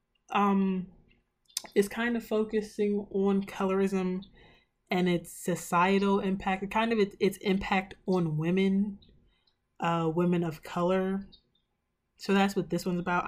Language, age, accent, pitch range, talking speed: English, 20-39, American, 175-205 Hz, 125 wpm